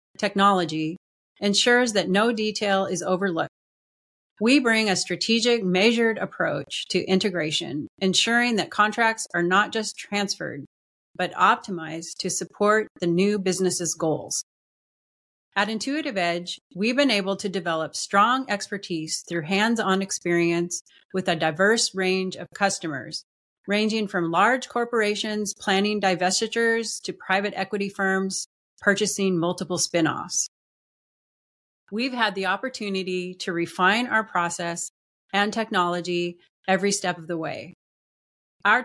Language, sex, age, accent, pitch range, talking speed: English, female, 30-49, American, 180-210 Hz, 120 wpm